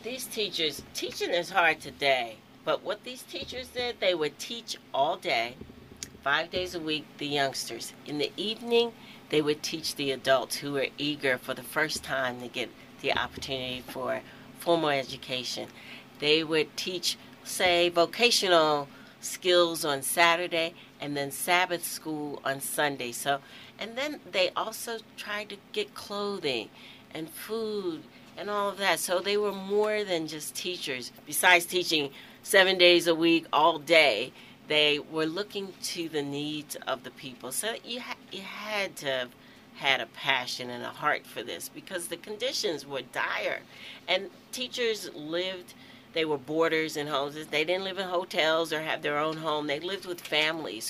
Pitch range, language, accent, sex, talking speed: 140-195 Hz, English, American, female, 165 wpm